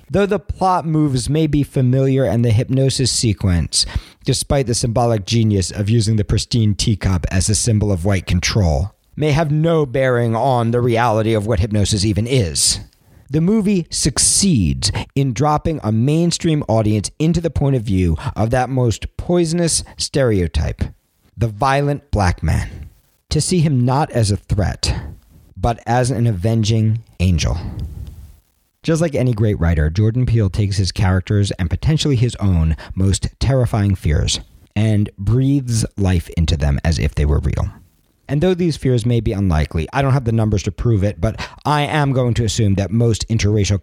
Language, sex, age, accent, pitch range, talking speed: English, male, 50-69, American, 95-130 Hz, 170 wpm